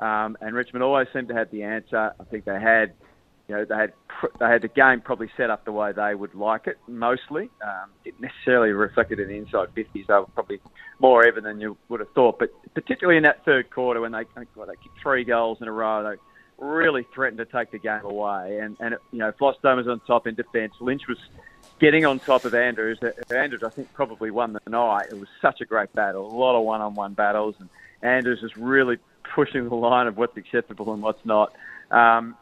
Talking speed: 235 wpm